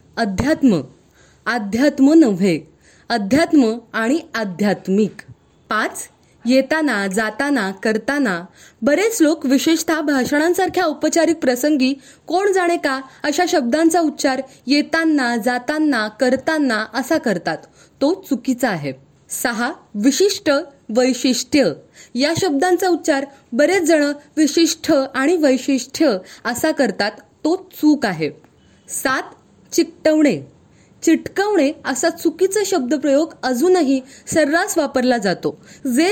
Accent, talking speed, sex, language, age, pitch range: native, 100 wpm, female, Marathi, 20-39, 255-335 Hz